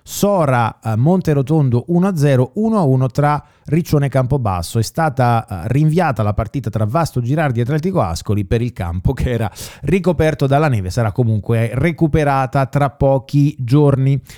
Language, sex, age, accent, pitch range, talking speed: Italian, male, 30-49, native, 120-165 Hz, 140 wpm